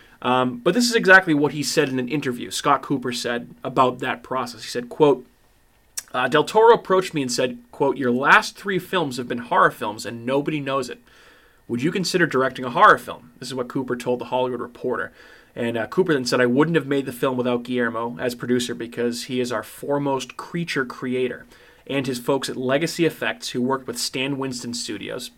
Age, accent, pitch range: 20-39, American, 120-145 Hz